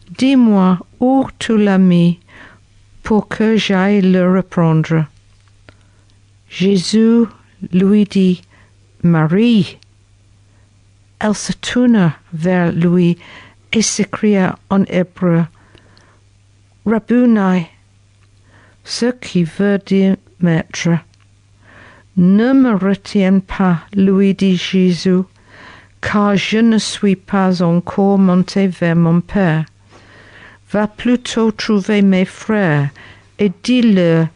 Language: French